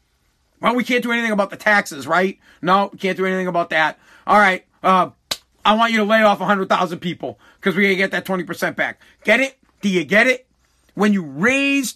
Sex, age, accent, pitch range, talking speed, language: male, 40-59, American, 200-255 Hz, 220 wpm, English